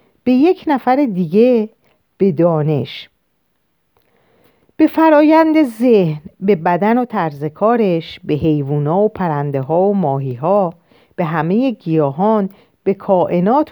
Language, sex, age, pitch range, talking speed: Persian, female, 40-59, 160-245 Hz, 120 wpm